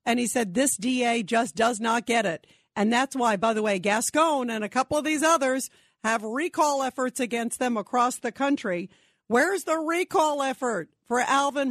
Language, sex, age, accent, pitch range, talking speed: English, female, 50-69, American, 220-270 Hz, 190 wpm